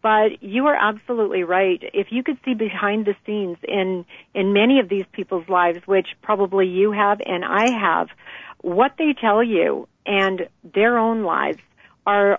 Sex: female